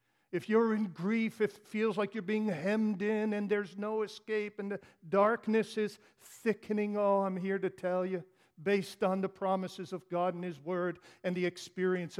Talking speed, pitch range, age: 190 wpm, 140-200 Hz, 50-69